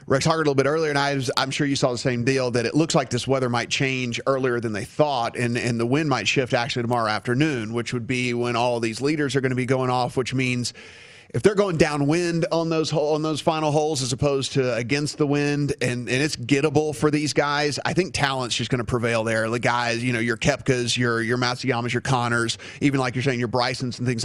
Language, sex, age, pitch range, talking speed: English, male, 30-49, 120-145 Hz, 255 wpm